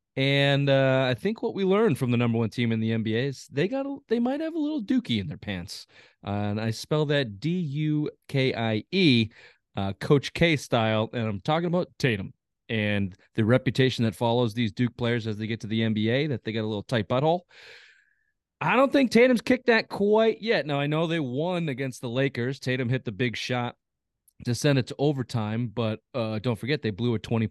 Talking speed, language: 210 wpm, English